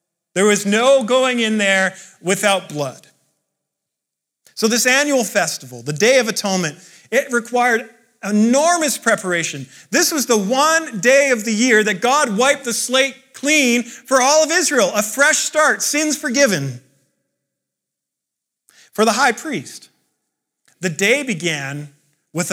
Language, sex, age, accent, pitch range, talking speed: English, male, 40-59, American, 200-270 Hz, 135 wpm